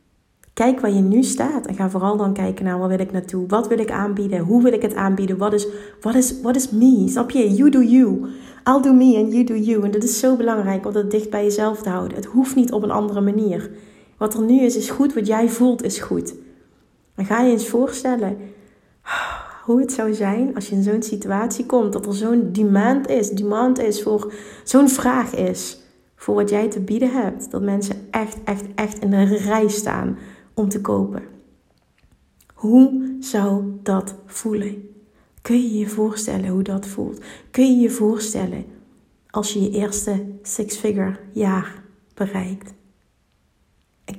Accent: Dutch